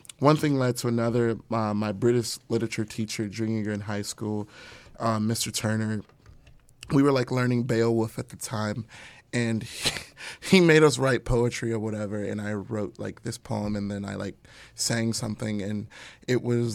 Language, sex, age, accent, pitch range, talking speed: English, male, 30-49, American, 110-125 Hz, 180 wpm